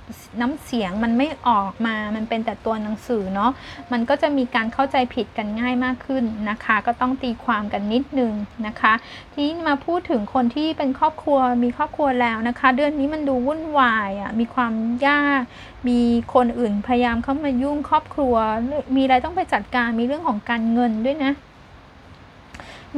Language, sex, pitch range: Thai, female, 225-270 Hz